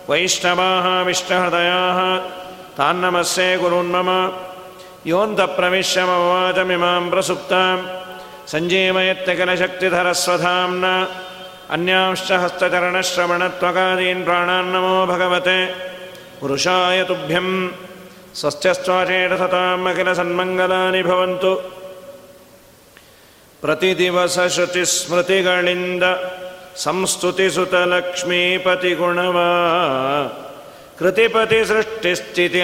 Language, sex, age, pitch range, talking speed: Kannada, male, 50-69, 175-185 Hz, 30 wpm